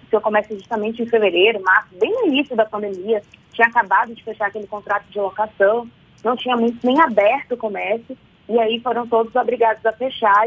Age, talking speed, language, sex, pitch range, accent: 20-39, 190 wpm, Portuguese, female, 210-245 Hz, Brazilian